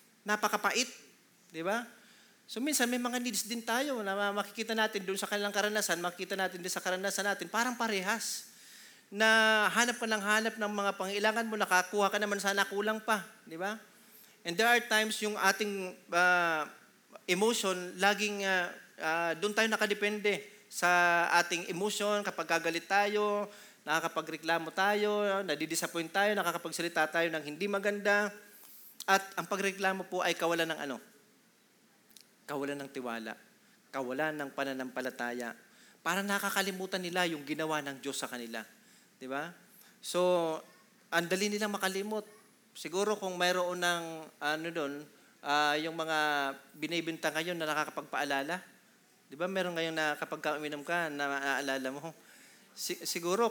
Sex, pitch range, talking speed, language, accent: male, 165-210 Hz, 140 wpm, Filipino, native